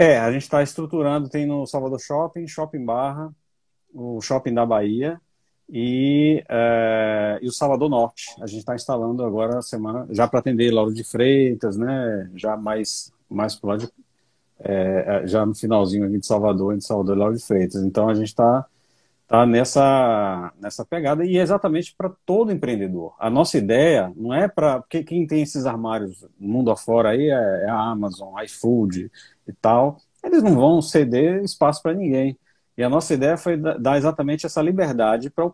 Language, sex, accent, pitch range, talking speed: Portuguese, male, Brazilian, 110-145 Hz, 175 wpm